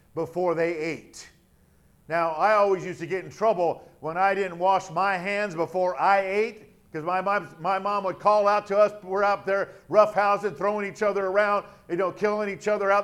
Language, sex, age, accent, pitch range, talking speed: English, male, 50-69, American, 175-215 Hz, 200 wpm